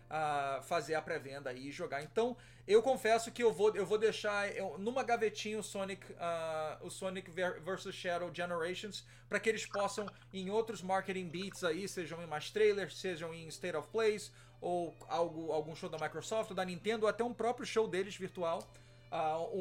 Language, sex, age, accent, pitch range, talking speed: Portuguese, male, 30-49, Brazilian, 175-230 Hz, 185 wpm